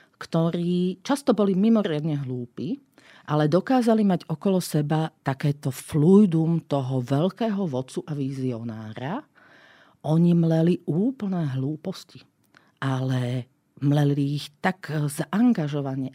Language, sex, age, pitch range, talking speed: Slovak, female, 40-59, 135-175 Hz, 95 wpm